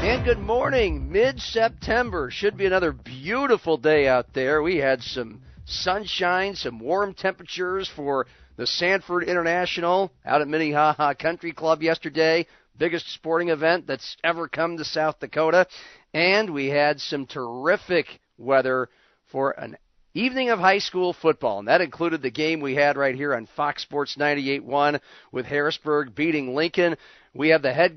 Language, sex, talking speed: English, male, 150 wpm